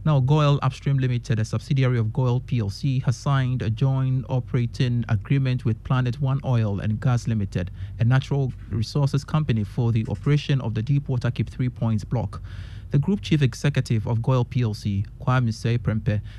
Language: English